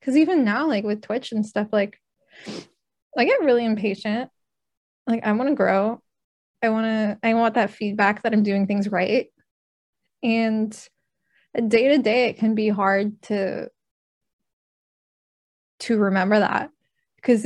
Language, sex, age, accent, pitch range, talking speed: English, female, 10-29, American, 200-235 Hz, 150 wpm